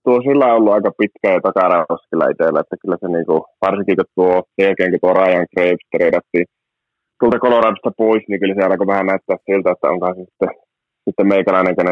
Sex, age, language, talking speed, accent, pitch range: male, 20-39, Finnish, 175 wpm, native, 90-105 Hz